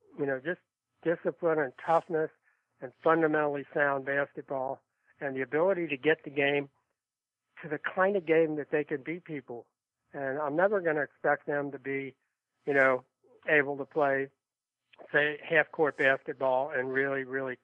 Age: 60-79